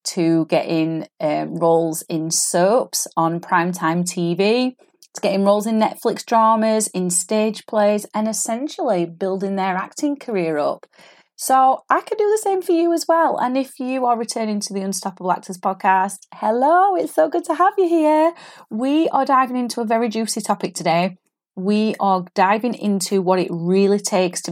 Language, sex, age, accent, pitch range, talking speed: English, female, 30-49, British, 170-215 Hz, 175 wpm